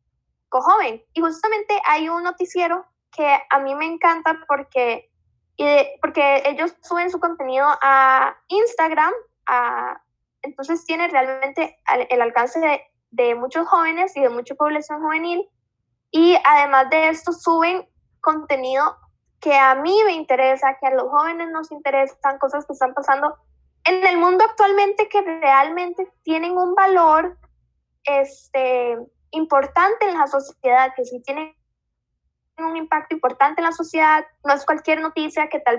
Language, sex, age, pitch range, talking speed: Spanish, female, 10-29, 270-335 Hz, 140 wpm